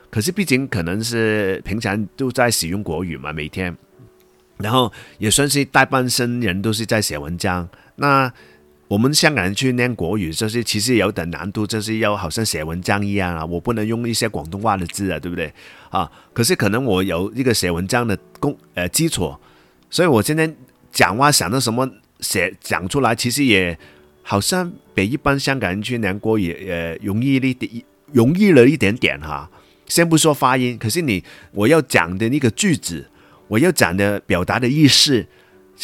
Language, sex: Chinese, male